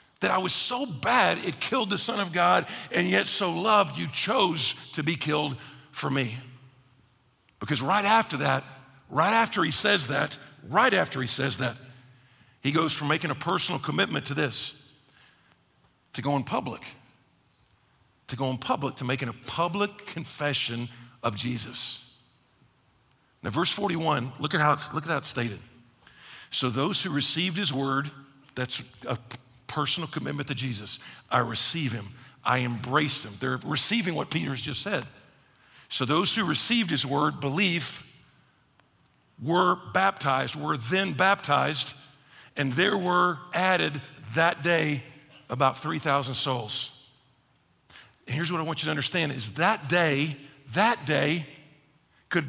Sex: male